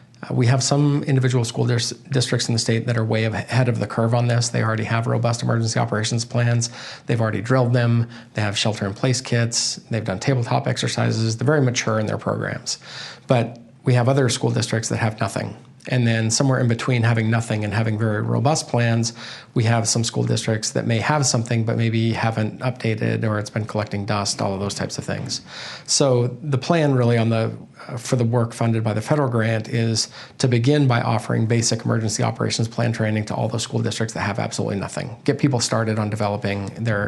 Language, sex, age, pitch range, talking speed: English, male, 40-59, 110-125 Hz, 205 wpm